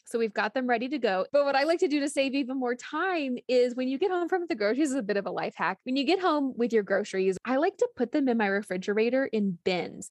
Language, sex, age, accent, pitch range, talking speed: English, female, 20-39, American, 210-280 Hz, 295 wpm